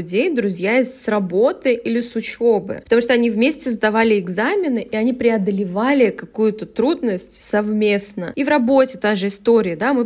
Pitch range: 210-255 Hz